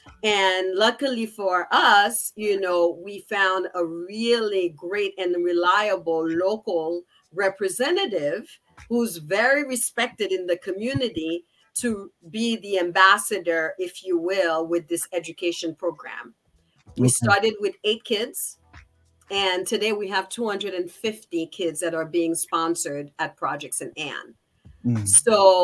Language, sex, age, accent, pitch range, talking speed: English, female, 50-69, American, 170-225 Hz, 120 wpm